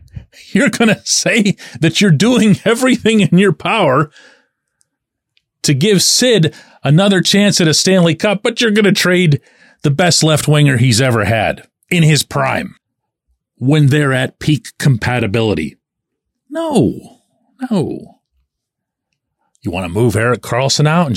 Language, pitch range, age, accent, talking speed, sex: English, 115-180 Hz, 40-59, American, 140 wpm, male